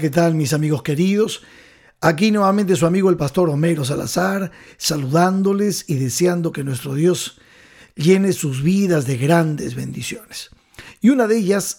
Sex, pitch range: male, 155-195 Hz